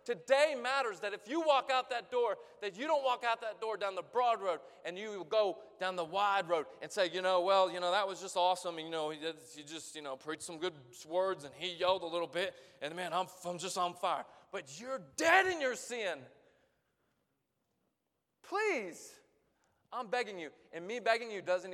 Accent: American